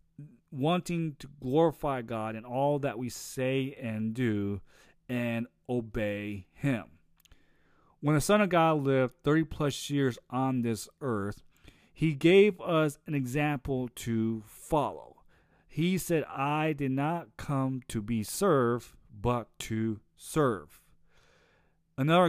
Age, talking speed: 40-59, 125 wpm